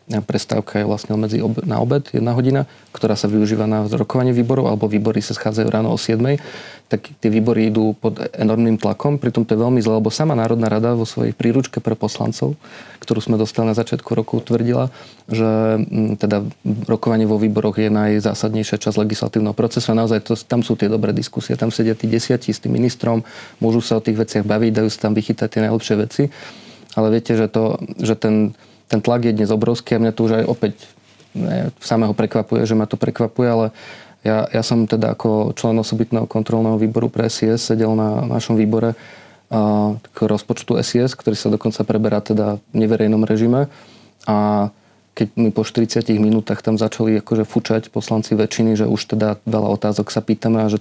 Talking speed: 190 wpm